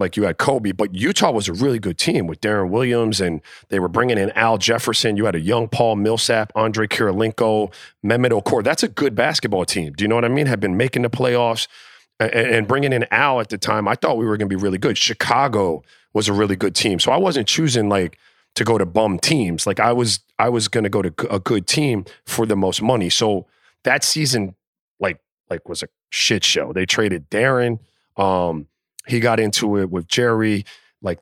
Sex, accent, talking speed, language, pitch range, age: male, American, 225 wpm, English, 100-120 Hz, 40-59